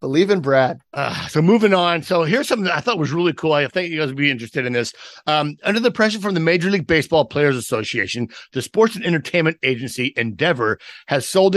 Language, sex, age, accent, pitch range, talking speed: English, male, 50-69, American, 125-165 Hz, 230 wpm